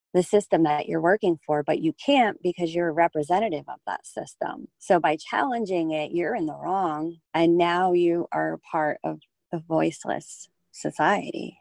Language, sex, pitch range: English, female, 150-175 Hz